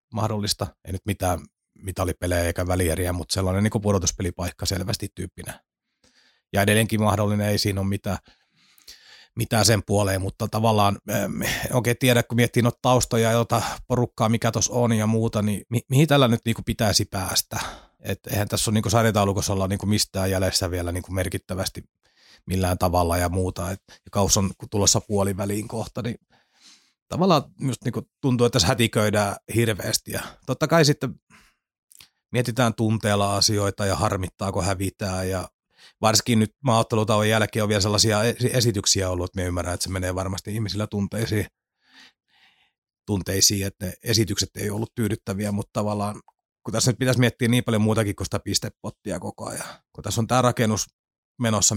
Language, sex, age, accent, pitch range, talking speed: Finnish, male, 30-49, native, 95-115 Hz, 160 wpm